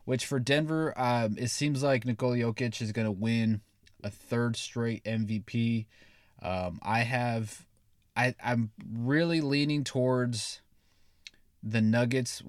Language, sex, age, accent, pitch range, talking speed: English, male, 20-39, American, 105-120 Hz, 130 wpm